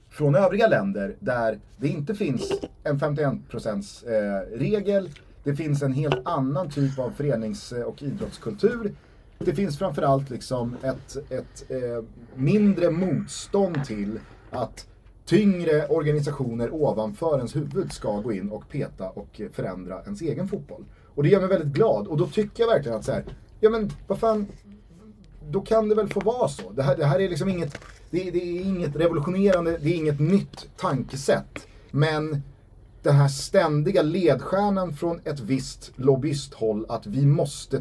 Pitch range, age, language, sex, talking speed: 115-170 Hz, 30-49, Swedish, male, 160 wpm